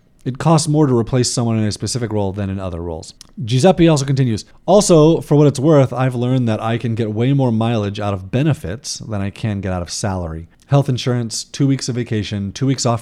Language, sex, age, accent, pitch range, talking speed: English, male, 30-49, American, 100-125 Hz, 230 wpm